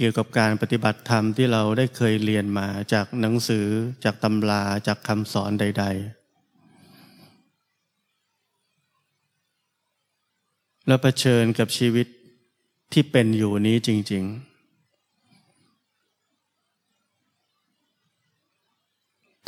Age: 20-39